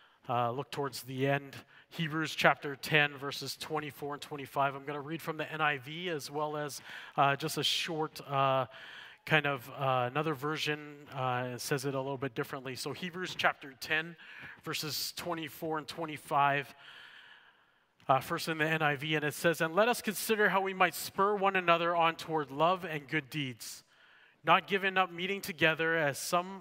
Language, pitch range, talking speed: English, 135-160 Hz, 180 wpm